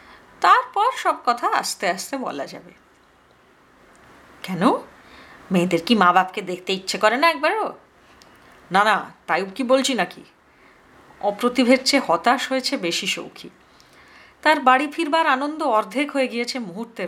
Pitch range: 195-265 Hz